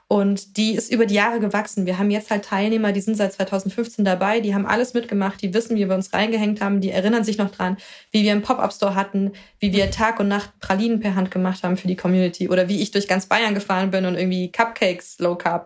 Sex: female